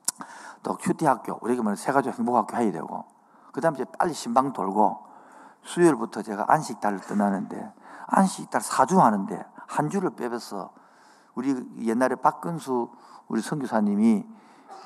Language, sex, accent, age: Korean, male, native, 50-69